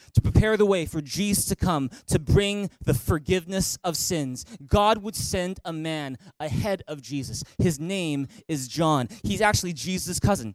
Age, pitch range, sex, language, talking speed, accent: 20-39, 175-225 Hz, male, English, 170 wpm, American